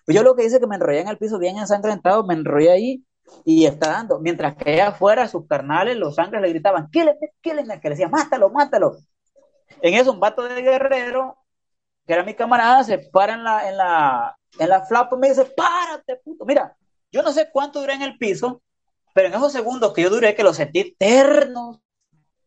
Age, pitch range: 30-49, 180-275 Hz